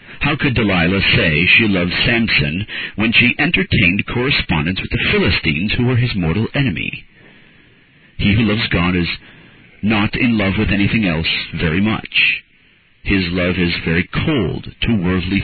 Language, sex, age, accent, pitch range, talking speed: English, male, 50-69, American, 90-110 Hz, 150 wpm